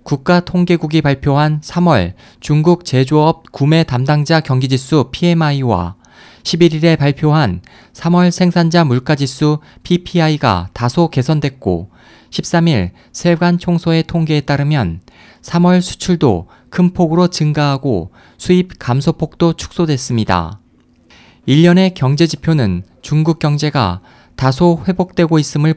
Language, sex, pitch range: Korean, male, 125-170 Hz